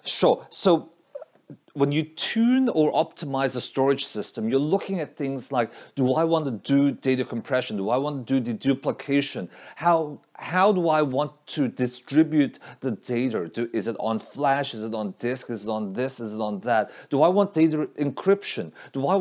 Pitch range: 130-170 Hz